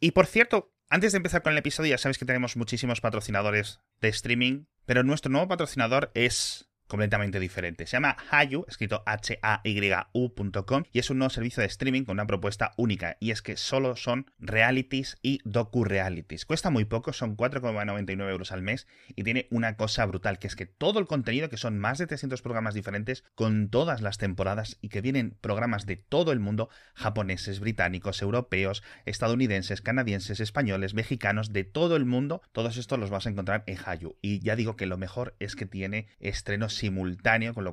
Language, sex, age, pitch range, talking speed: Spanish, male, 30-49, 100-120 Hz, 190 wpm